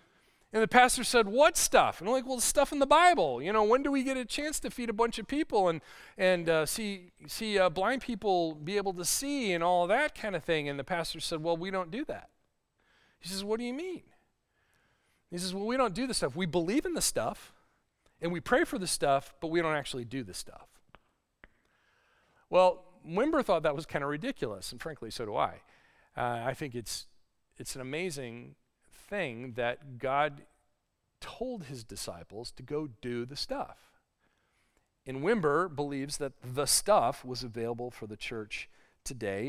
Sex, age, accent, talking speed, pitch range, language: male, 40-59, American, 200 wpm, 125-205 Hz, English